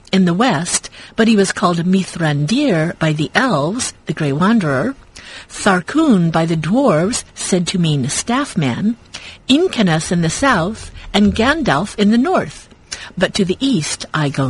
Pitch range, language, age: 165-225 Hz, English, 50-69